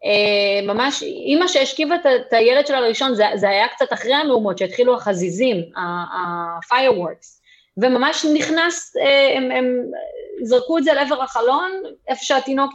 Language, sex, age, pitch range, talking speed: Hebrew, female, 30-49, 210-285 Hz, 145 wpm